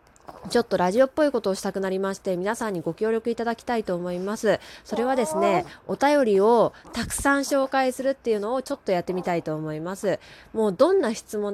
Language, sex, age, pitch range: Japanese, female, 20-39, 195-260 Hz